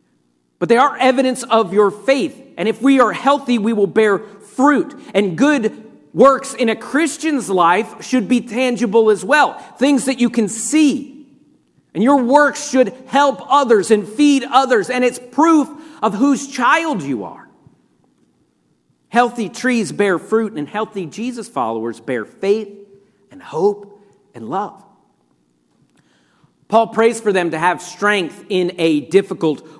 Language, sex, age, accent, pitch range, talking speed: English, male, 40-59, American, 205-270 Hz, 150 wpm